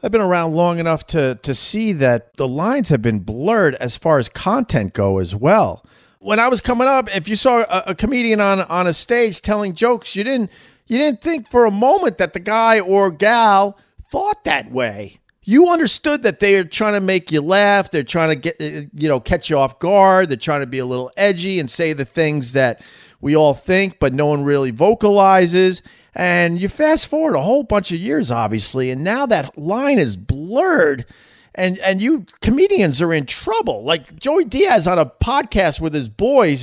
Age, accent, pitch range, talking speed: 40-59, American, 150-220 Hz, 205 wpm